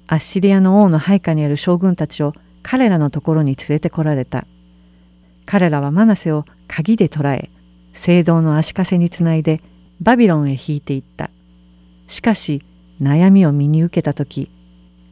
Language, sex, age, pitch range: Japanese, female, 50-69, 135-180 Hz